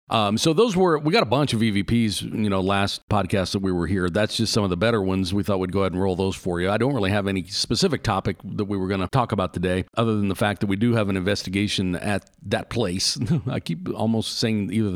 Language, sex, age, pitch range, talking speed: English, male, 50-69, 95-120 Hz, 275 wpm